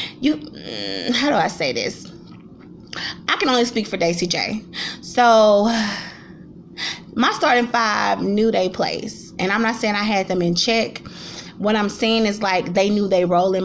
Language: English